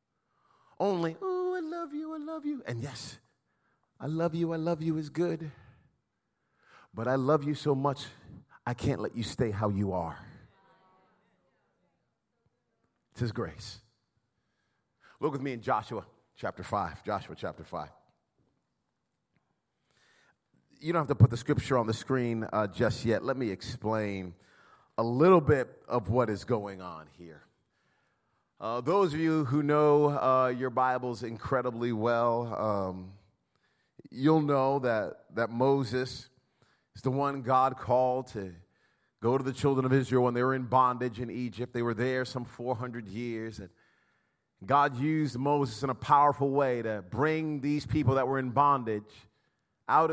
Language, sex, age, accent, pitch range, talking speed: English, male, 30-49, American, 115-145 Hz, 155 wpm